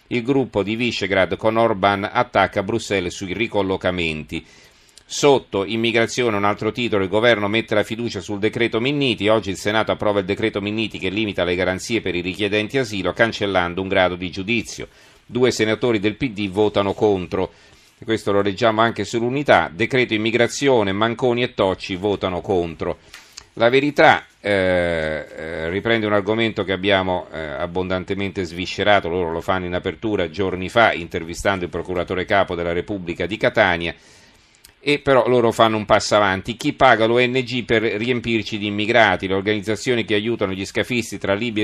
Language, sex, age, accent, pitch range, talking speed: Italian, male, 40-59, native, 95-115 Hz, 155 wpm